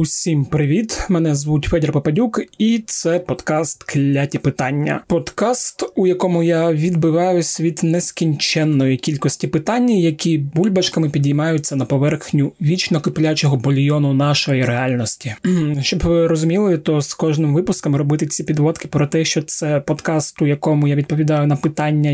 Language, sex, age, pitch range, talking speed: Ukrainian, male, 20-39, 150-175 Hz, 140 wpm